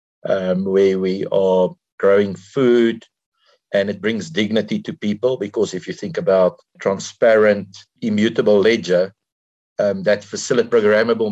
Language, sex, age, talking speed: English, male, 50-69, 125 wpm